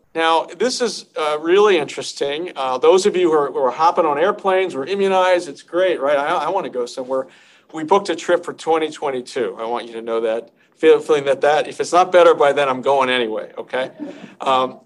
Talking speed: 220 wpm